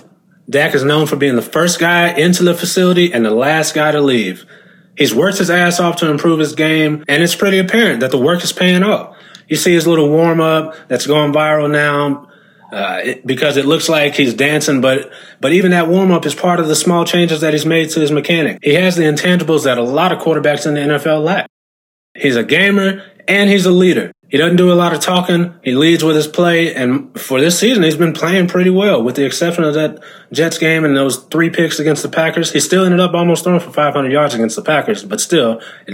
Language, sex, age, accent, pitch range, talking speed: English, male, 20-39, American, 145-180 Hz, 230 wpm